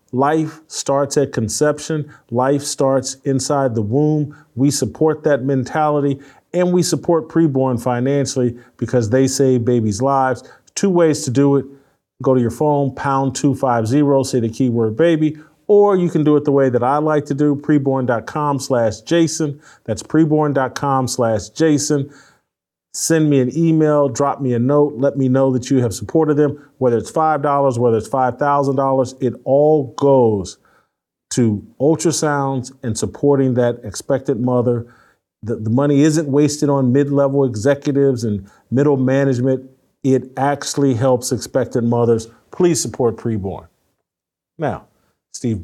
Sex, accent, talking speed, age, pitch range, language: male, American, 145 wpm, 40-59, 125-145 Hz, English